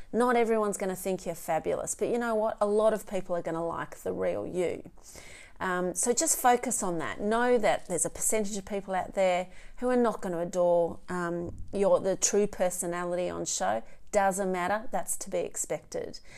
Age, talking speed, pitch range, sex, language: 30-49, 205 wpm, 175-225 Hz, female, English